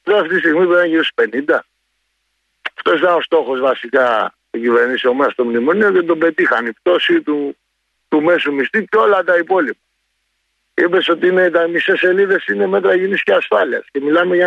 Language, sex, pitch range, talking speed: Greek, male, 150-210 Hz, 180 wpm